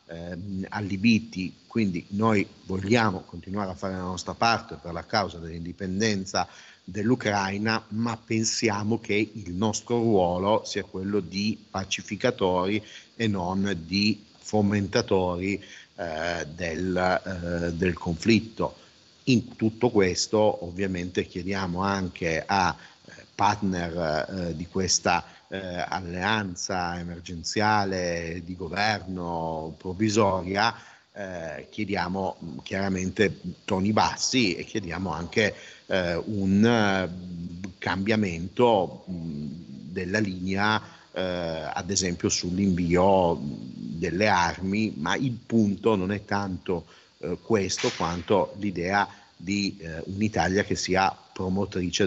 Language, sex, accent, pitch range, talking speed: Italian, male, native, 90-105 Hz, 100 wpm